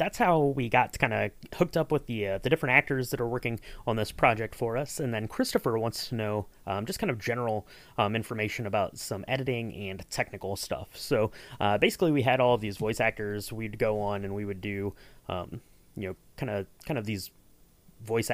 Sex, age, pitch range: male, 30-49, 100-130 Hz